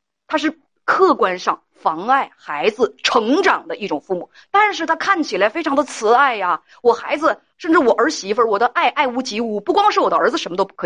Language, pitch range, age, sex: Chinese, 235-335 Hz, 30-49, female